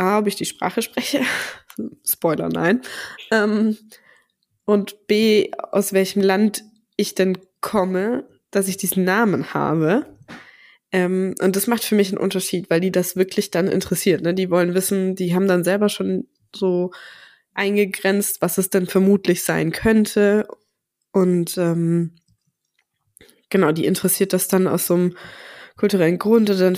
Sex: female